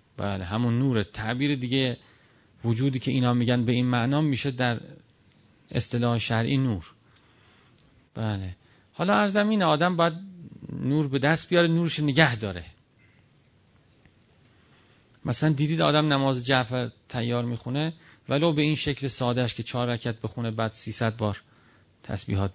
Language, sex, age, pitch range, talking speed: Persian, male, 40-59, 110-140 Hz, 130 wpm